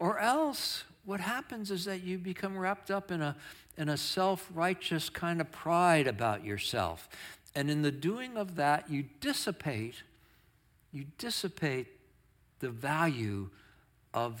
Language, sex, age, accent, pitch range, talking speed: English, male, 60-79, American, 115-175 Hz, 135 wpm